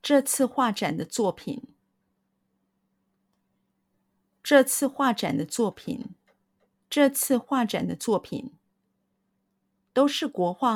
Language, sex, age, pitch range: Chinese, female, 50-69, 205-270 Hz